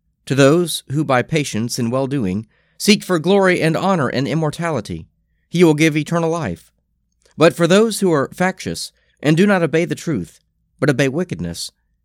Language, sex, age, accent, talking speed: English, male, 40-59, American, 170 wpm